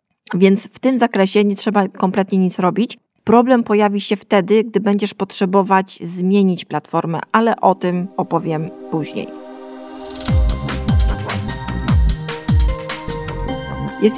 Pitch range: 175-215 Hz